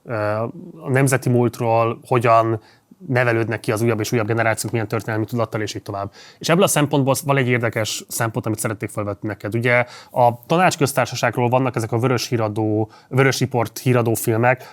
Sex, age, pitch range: male, 20-39, 115-130 Hz